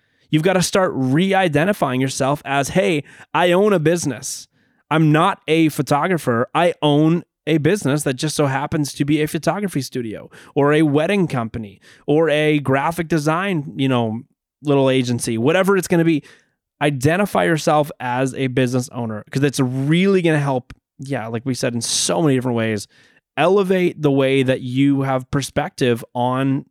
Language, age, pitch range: English, 20-39, 125-160 Hz